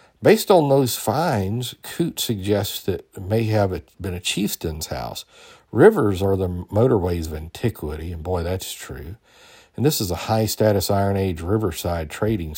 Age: 50-69